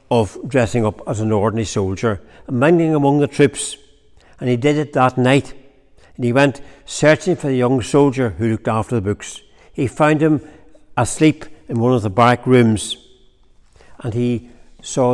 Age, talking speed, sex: 60-79, 175 wpm, male